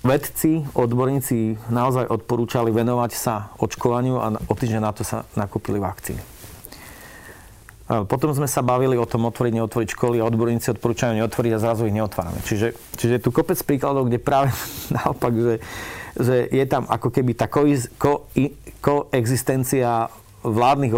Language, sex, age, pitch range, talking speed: Slovak, male, 40-59, 105-125 Hz, 145 wpm